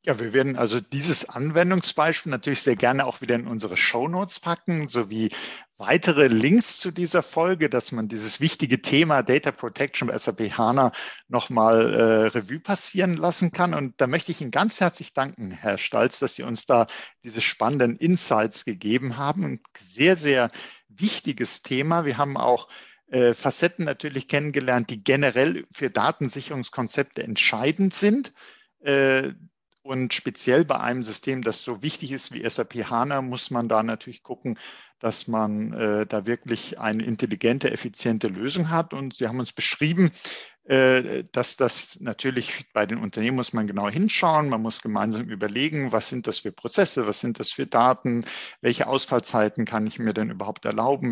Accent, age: German, 50-69